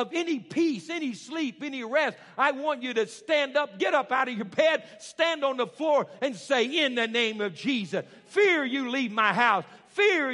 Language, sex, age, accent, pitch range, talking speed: English, male, 60-79, American, 215-280 Hz, 210 wpm